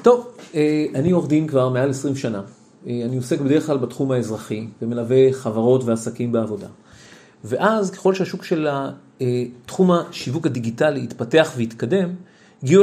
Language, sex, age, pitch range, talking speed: Hebrew, male, 40-59, 130-175 Hz, 115 wpm